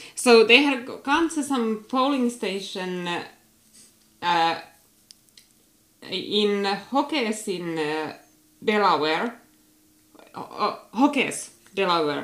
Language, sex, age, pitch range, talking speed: English, female, 20-39, 180-245 Hz, 70 wpm